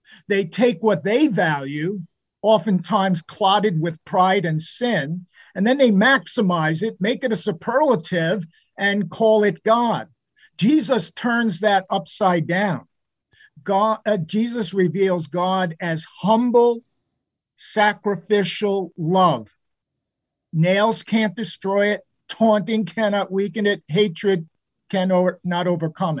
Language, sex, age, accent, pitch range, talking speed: English, male, 50-69, American, 170-220 Hz, 110 wpm